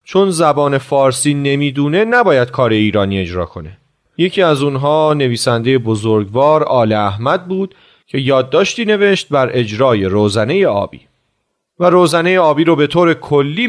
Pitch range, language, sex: 130-185 Hz, Persian, male